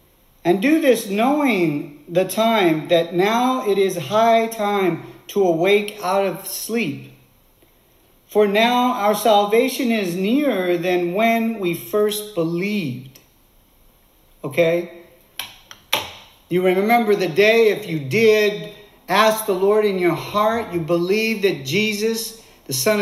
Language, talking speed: English, 125 wpm